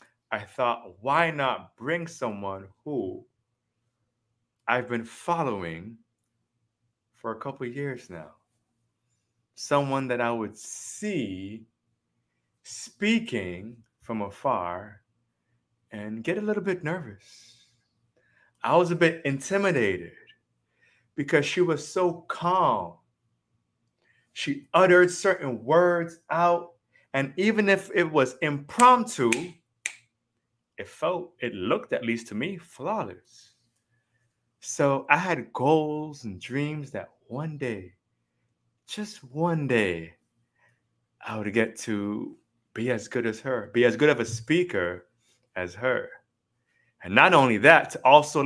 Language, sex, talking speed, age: English, male, 120 wpm, 30-49